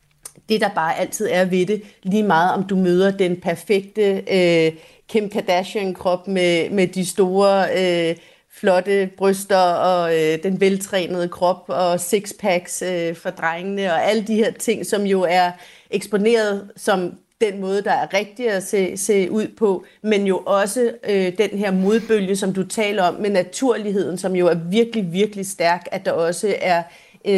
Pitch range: 180-215 Hz